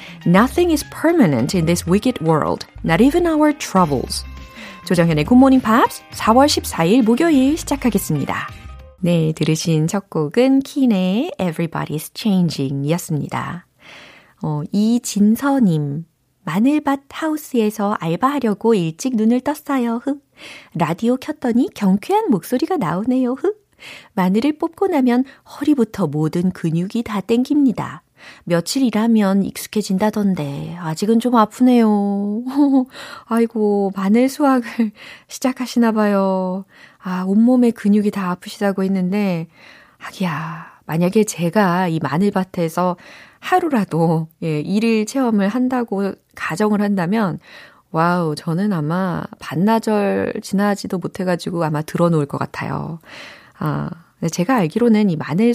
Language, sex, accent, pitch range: Korean, female, native, 175-250 Hz